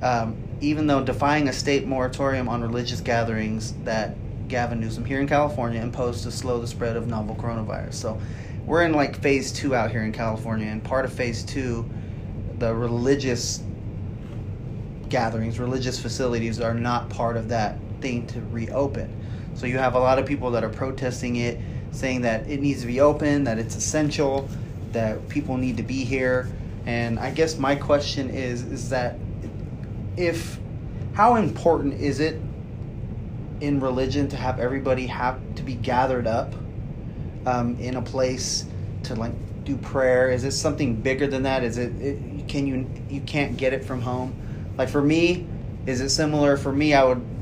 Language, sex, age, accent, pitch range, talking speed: English, male, 30-49, American, 115-135 Hz, 175 wpm